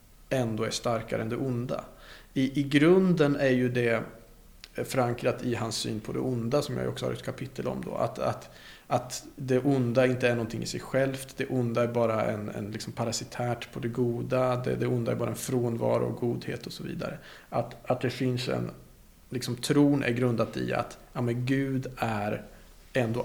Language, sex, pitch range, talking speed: Swedish, male, 120-145 Hz, 185 wpm